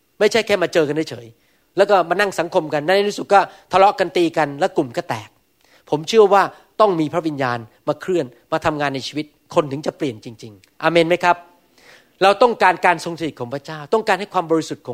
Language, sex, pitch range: Thai, male, 140-185 Hz